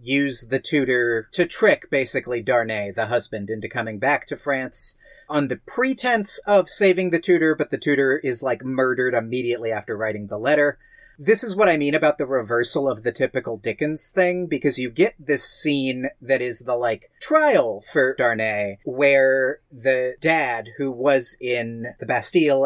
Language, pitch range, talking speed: English, 125-155 Hz, 170 wpm